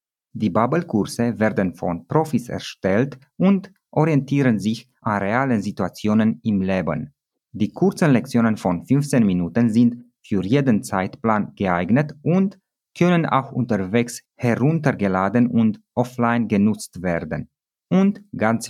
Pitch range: 105-140 Hz